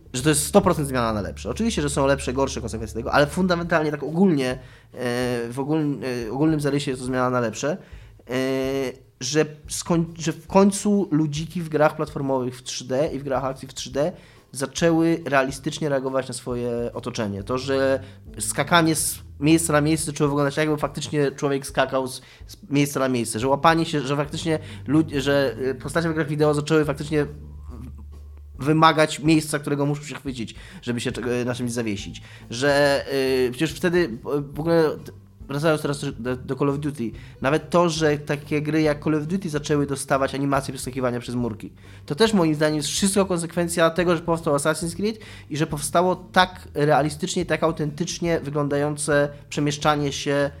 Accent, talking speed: native, 160 wpm